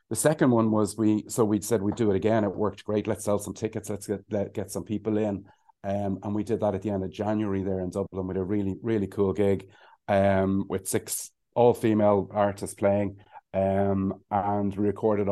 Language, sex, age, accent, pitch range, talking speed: English, male, 30-49, Irish, 95-110 Hz, 220 wpm